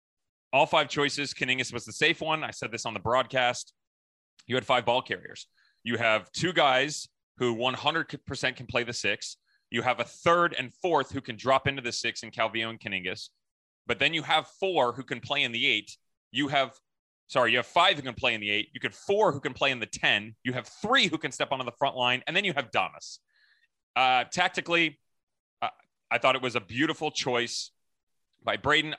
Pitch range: 115-145 Hz